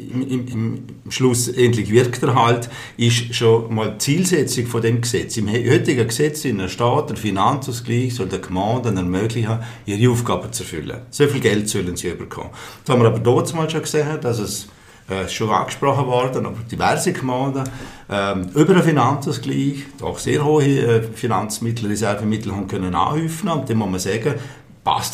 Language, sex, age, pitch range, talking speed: German, male, 50-69, 105-130 Hz, 160 wpm